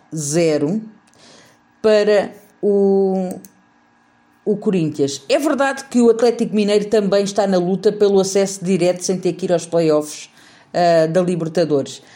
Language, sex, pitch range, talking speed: Portuguese, female, 165-235 Hz, 135 wpm